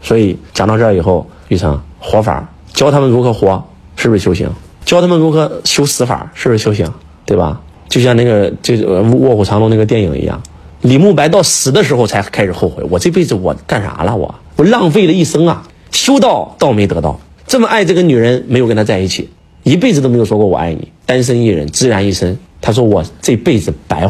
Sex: male